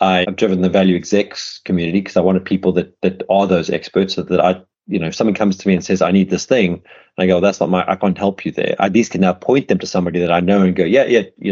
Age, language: 30-49, English